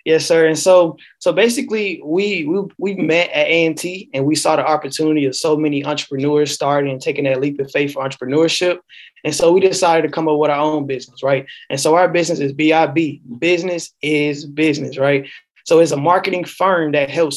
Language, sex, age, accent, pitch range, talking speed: English, male, 20-39, American, 150-185 Hz, 205 wpm